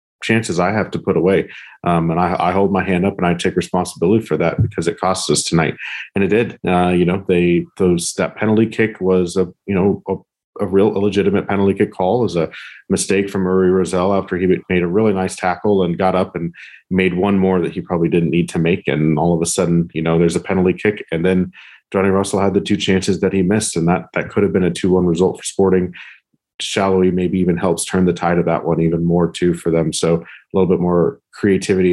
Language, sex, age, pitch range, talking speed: English, male, 40-59, 85-100 Hz, 240 wpm